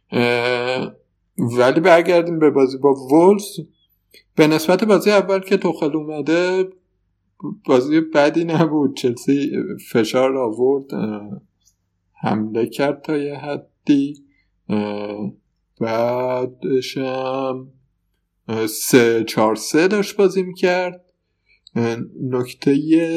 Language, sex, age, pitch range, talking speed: Persian, male, 50-69, 105-140 Hz, 90 wpm